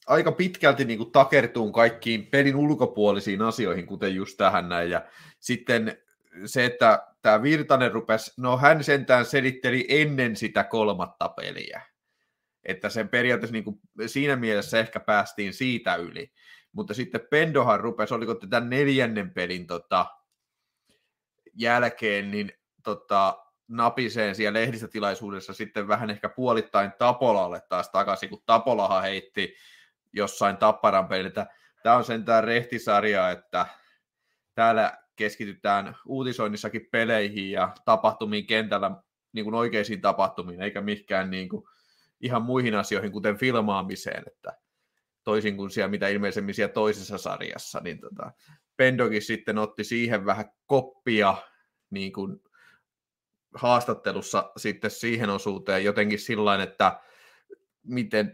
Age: 30-49